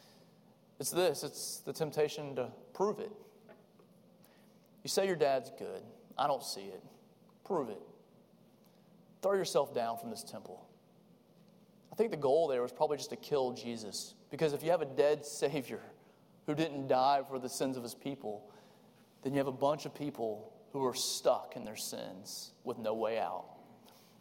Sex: male